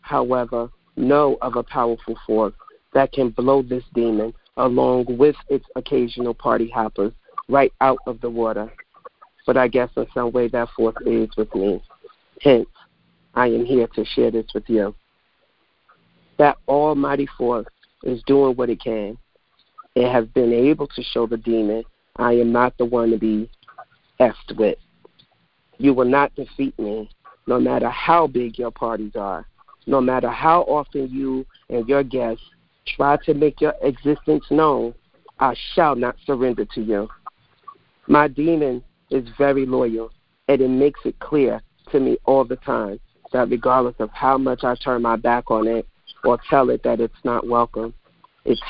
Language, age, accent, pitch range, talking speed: English, 40-59, American, 115-140 Hz, 165 wpm